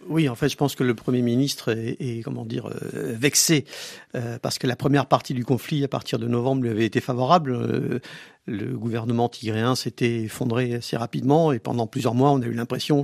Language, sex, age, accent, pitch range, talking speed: French, male, 50-69, French, 120-145 Hz, 205 wpm